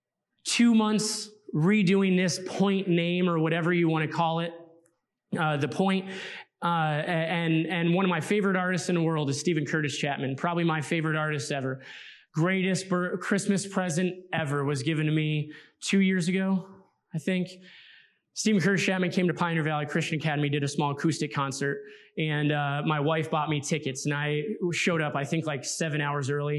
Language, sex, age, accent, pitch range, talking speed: English, male, 20-39, American, 150-180 Hz, 180 wpm